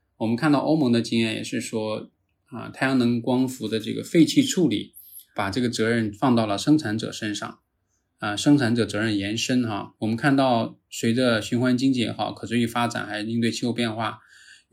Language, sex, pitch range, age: Chinese, male, 105-125 Hz, 20-39